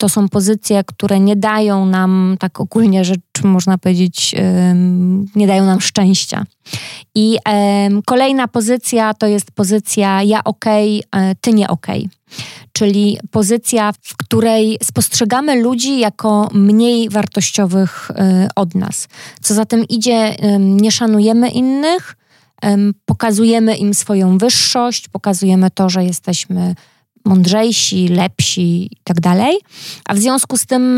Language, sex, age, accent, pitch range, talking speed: Polish, female, 20-39, native, 190-220 Hz, 120 wpm